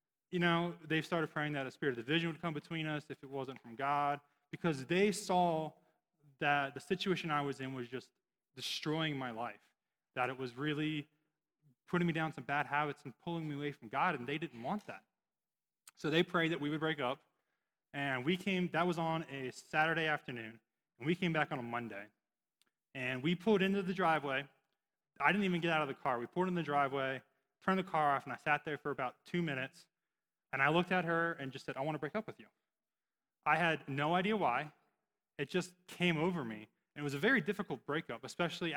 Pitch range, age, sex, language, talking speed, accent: 130-165 Hz, 20-39, male, English, 220 wpm, American